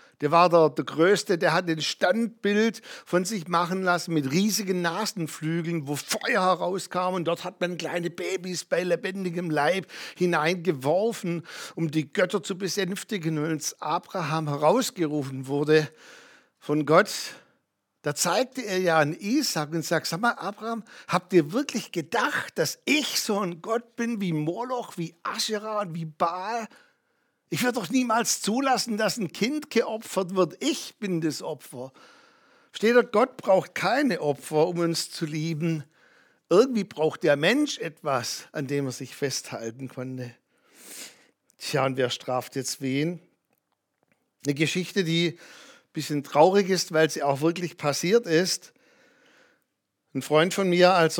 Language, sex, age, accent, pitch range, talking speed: German, male, 60-79, German, 155-205 Hz, 150 wpm